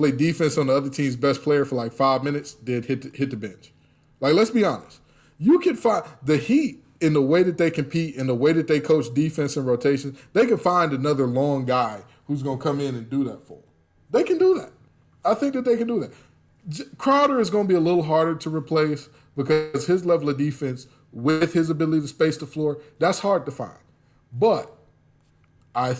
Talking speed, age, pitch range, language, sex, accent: 220 wpm, 20-39, 135-165 Hz, English, male, American